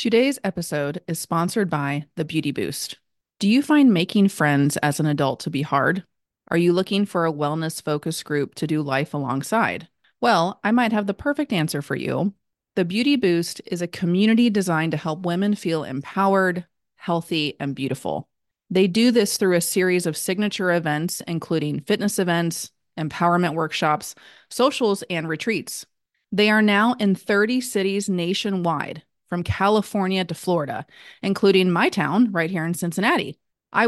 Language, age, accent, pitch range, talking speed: English, 30-49, American, 160-200 Hz, 160 wpm